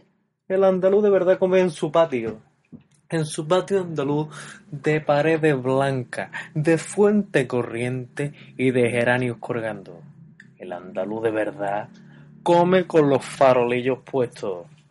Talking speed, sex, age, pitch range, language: 125 wpm, male, 20-39, 125-175 Hz, Spanish